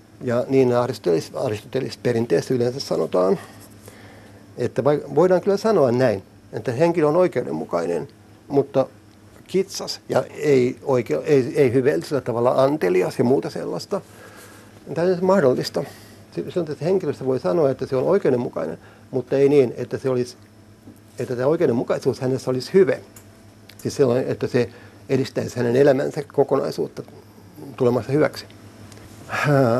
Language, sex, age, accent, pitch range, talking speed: Finnish, male, 60-79, native, 110-140 Hz, 125 wpm